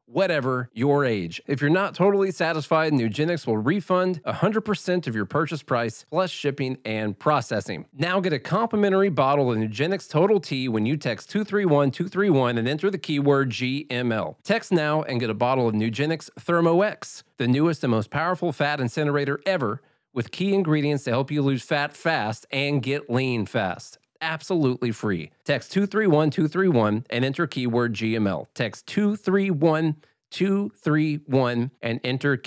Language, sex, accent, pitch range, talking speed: English, male, American, 120-160 Hz, 145 wpm